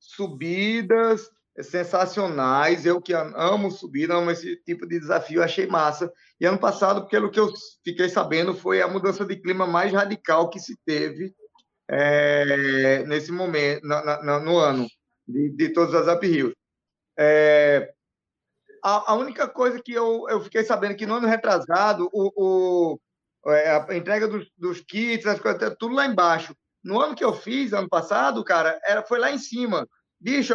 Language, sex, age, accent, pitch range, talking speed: Portuguese, male, 20-39, Brazilian, 160-225 Hz, 150 wpm